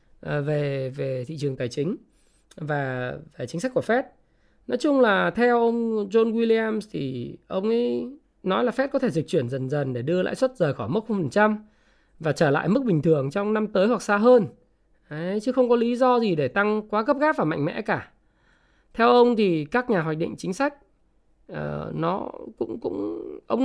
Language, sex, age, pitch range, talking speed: Vietnamese, male, 20-39, 165-245 Hz, 205 wpm